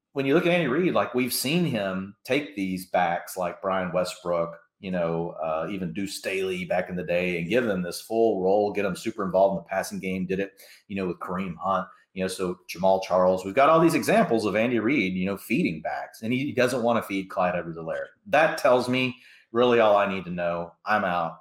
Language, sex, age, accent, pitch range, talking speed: English, male, 30-49, American, 90-130 Hz, 235 wpm